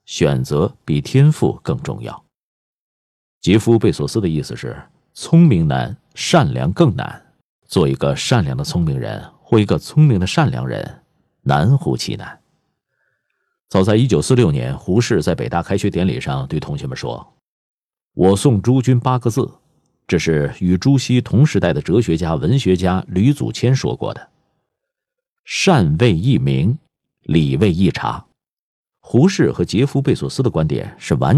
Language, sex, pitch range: Chinese, male, 100-150 Hz